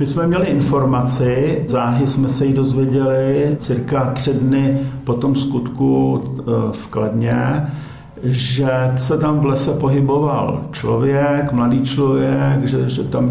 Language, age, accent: Czech, 50-69, native